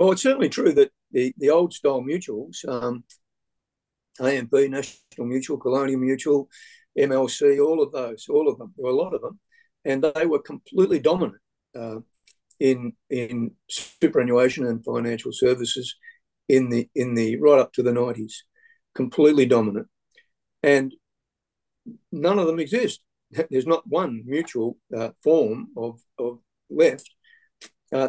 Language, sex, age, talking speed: English, male, 50-69, 145 wpm